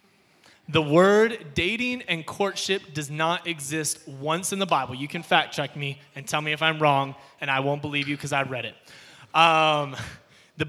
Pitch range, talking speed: 145-180 Hz, 190 wpm